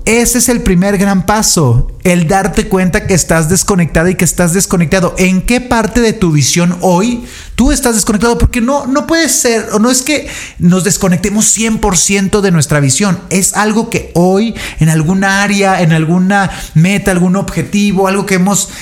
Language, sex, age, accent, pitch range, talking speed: Spanish, male, 30-49, Mexican, 150-200 Hz, 180 wpm